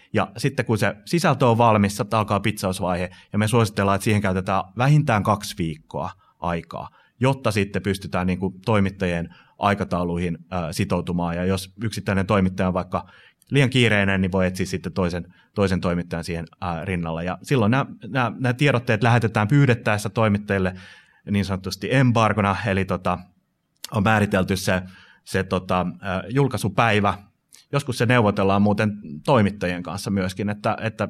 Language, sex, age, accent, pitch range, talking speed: Finnish, male, 30-49, native, 95-115 Hz, 135 wpm